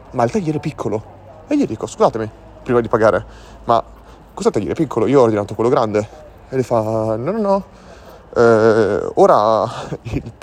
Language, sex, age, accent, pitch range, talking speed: Italian, male, 30-49, native, 105-125 Hz, 175 wpm